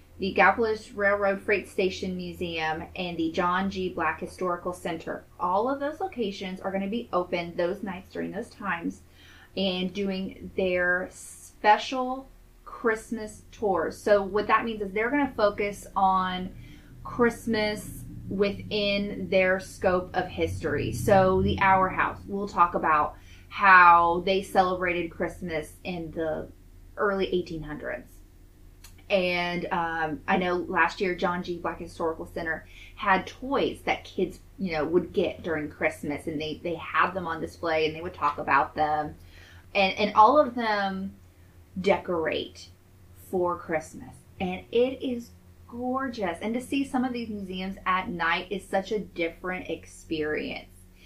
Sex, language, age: female, English, 20-39